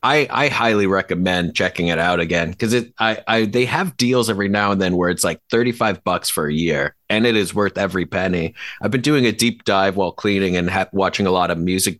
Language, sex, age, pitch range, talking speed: English, male, 30-49, 95-120 Hz, 245 wpm